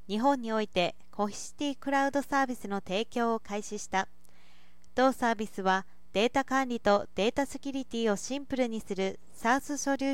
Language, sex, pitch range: Japanese, female, 200-260 Hz